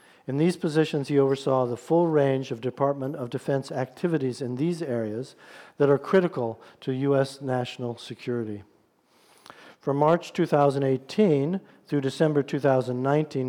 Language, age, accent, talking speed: English, 50-69, American, 130 wpm